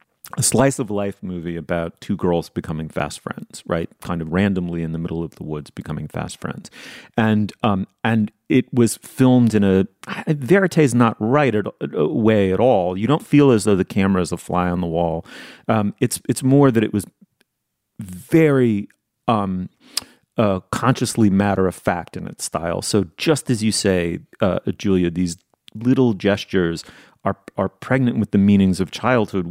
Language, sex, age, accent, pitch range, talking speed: English, male, 30-49, American, 95-130 Hz, 175 wpm